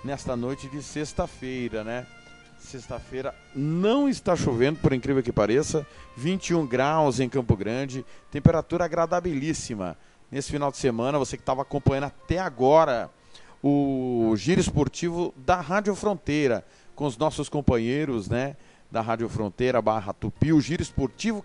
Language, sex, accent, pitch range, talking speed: Portuguese, male, Brazilian, 115-155 Hz, 135 wpm